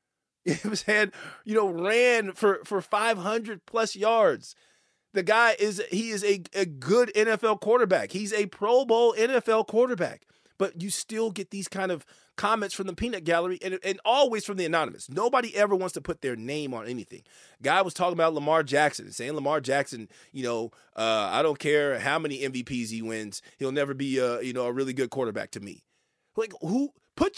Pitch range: 135-215 Hz